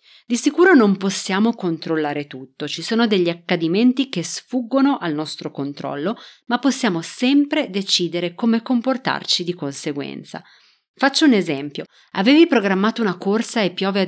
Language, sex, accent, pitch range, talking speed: Italian, female, native, 170-245 Hz, 140 wpm